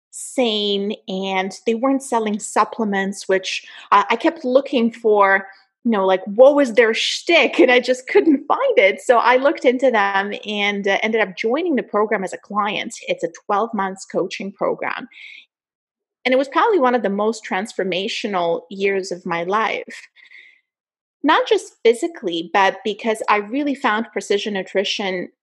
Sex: female